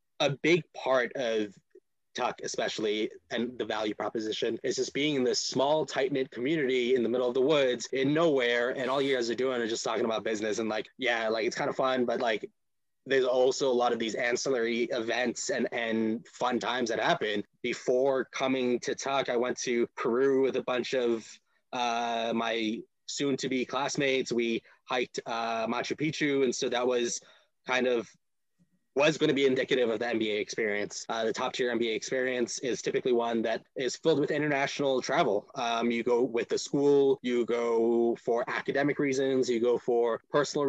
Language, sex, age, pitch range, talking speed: English, male, 20-39, 120-145 Hz, 185 wpm